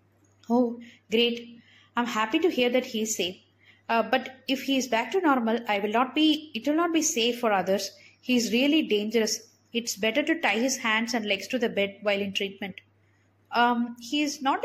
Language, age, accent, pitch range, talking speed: Tamil, 20-39, native, 200-275 Hz, 200 wpm